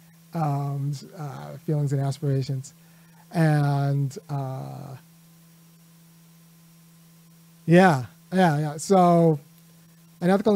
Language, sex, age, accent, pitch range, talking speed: English, male, 30-49, American, 155-180 Hz, 75 wpm